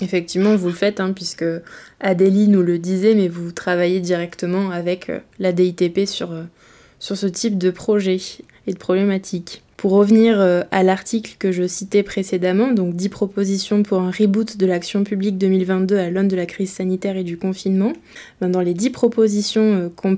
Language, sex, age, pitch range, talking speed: French, female, 20-39, 185-220 Hz, 170 wpm